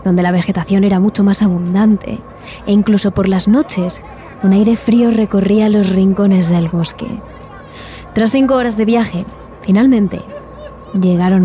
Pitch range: 185-230 Hz